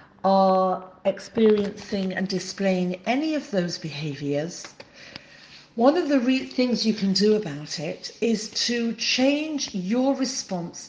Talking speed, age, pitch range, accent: 120 wpm, 50-69, 175-215 Hz, British